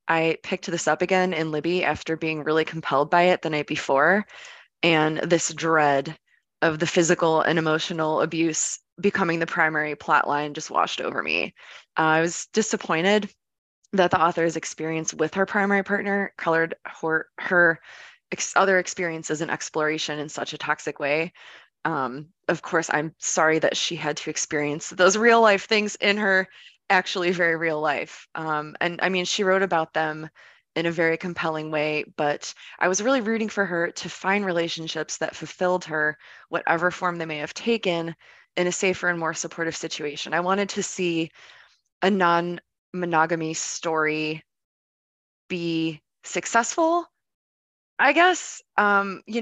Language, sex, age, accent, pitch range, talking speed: English, female, 20-39, American, 155-190 Hz, 160 wpm